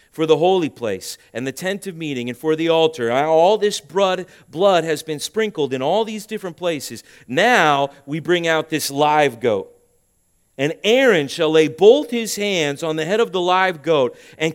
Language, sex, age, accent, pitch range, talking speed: English, male, 40-59, American, 130-185 Hz, 190 wpm